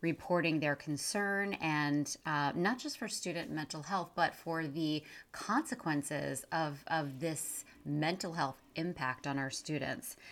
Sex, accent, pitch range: female, American, 145-180 Hz